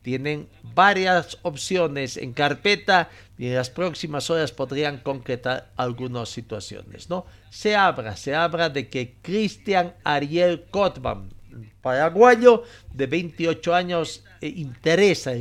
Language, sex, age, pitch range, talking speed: Spanish, male, 50-69, 115-165 Hz, 115 wpm